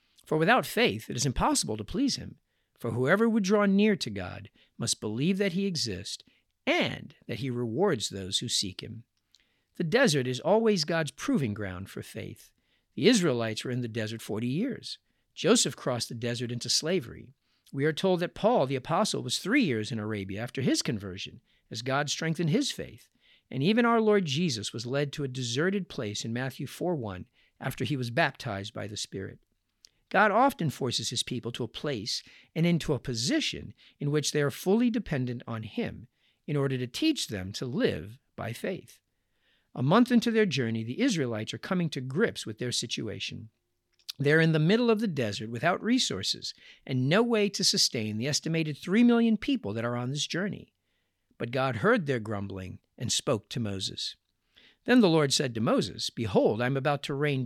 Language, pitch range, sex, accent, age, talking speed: English, 115-175 Hz, male, American, 50-69, 190 wpm